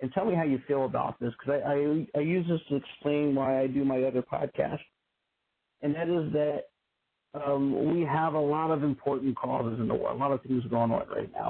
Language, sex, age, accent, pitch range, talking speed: English, male, 50-69, American, 130-160 Hz, 235 wpm